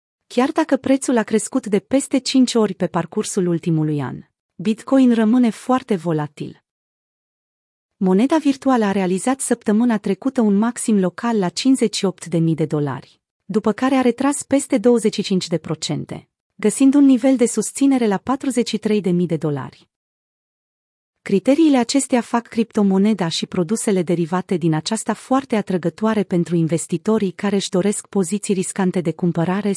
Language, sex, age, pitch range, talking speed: Romanian, female, 30-49, 180-235 Hz, 130 wpm